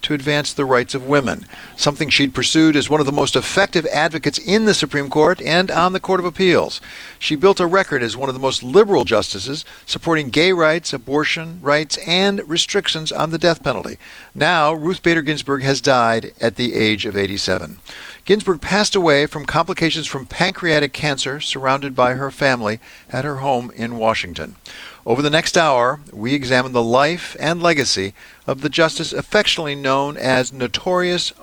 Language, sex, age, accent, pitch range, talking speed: English, male, 60-79, American, 135-170 Hz, 180 wpm